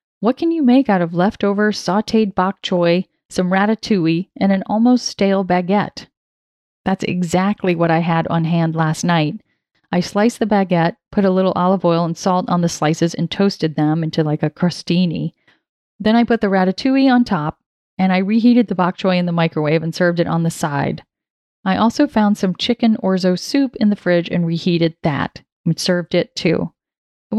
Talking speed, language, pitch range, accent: 190 wpm, English, 170-220 Hz, American